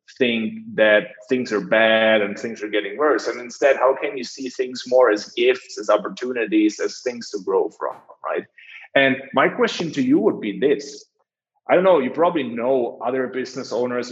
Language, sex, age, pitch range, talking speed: English, male, 30-49, 115-160 Hz, 190 wpm